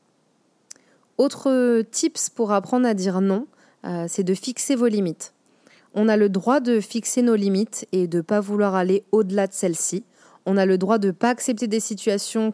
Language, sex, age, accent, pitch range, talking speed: French, female, 20-39, French, 190-235 Hz, 190 wpm